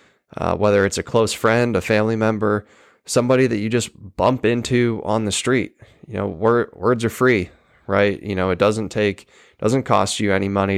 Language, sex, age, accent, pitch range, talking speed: English, male, 20-39, American, 95-110 Hz, 190 wpm